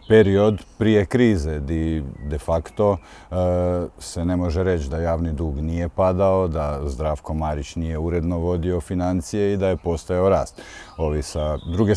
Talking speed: 155 wpm